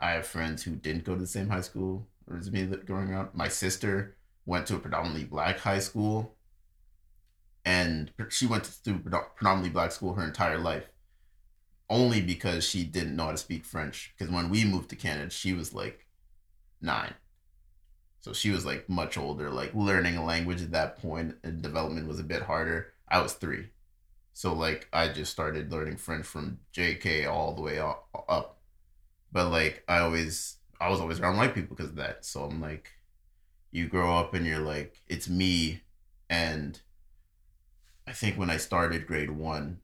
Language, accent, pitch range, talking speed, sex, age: English, American, 80-95 Hz, 180 wpm, male, 30-49